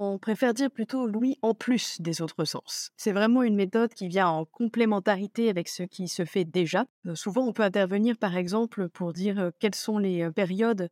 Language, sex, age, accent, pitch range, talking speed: French, female, 20-39, French, 180-215 Hz, 215 wpm